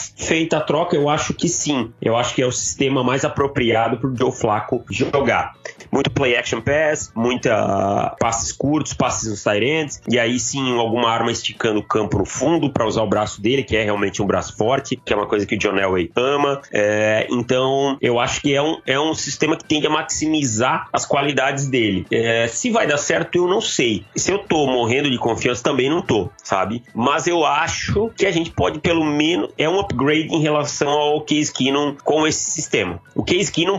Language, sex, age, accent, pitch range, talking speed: Portuguese, male, 30-49, Brazilian, 115-150 Hz, 200 wpm